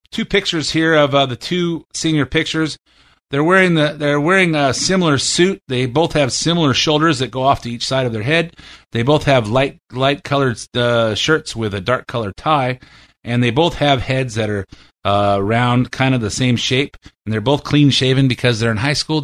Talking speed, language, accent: 210 wpm, English, American